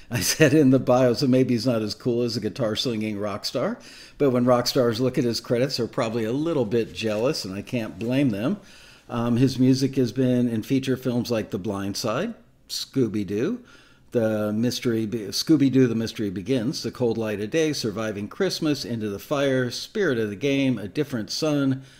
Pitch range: 110-135 Hz